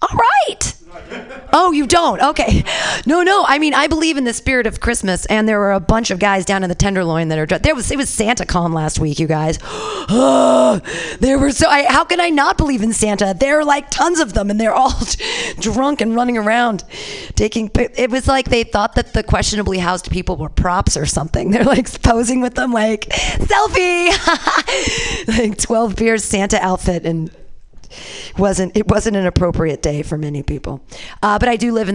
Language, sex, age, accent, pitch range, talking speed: English, female, 40-59, American, 180-240 Hz, 205 wpm